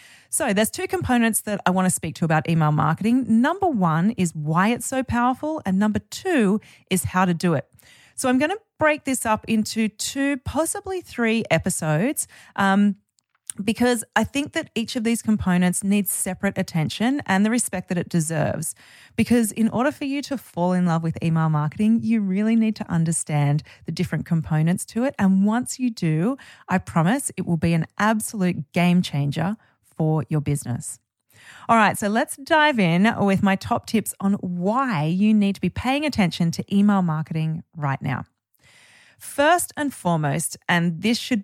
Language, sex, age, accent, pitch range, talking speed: English, female, 30-49, Australian, 165-230 Hz, 180 wpm